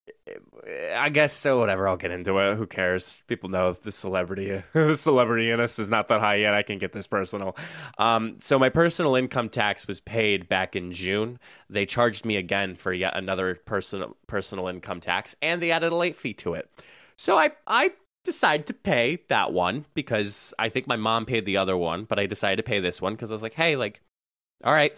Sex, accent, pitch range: male, American, 100-150 Hz